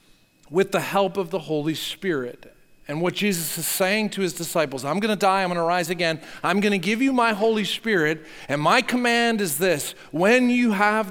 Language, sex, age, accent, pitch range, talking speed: English, male, 40-59, American, 160-220 Hz, 215 wpm